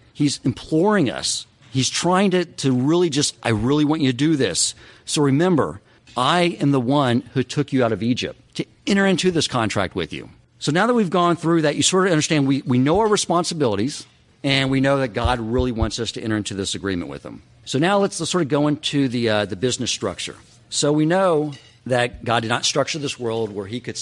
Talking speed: 230 wpm